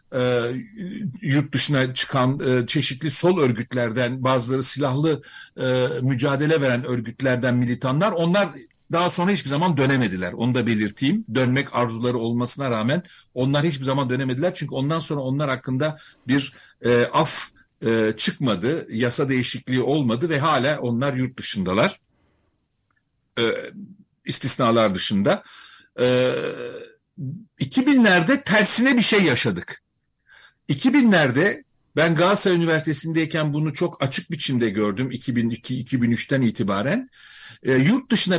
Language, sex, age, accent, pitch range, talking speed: Turkish, male, 60-79, native, 125-175 Hz, 100 wpm